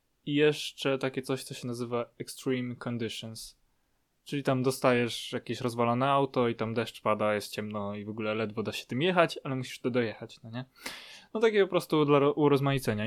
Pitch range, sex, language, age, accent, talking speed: 125-155 Hz, male, Polish, 20-39, native, 190 wpm